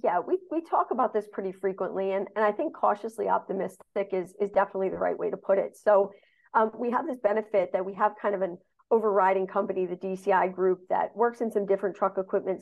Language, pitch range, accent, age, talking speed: English, 190-215 Hz, American, 40-59, 225 wpm